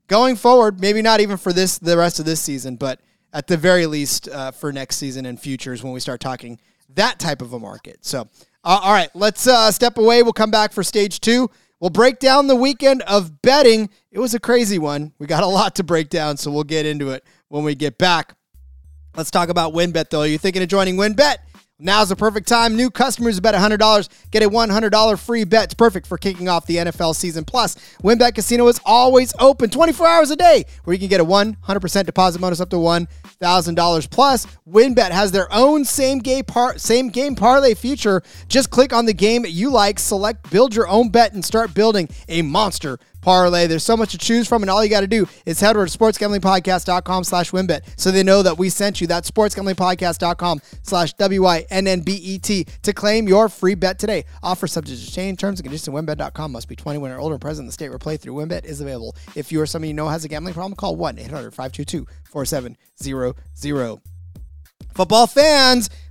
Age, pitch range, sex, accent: 30-49, 160-220 Hz, male, American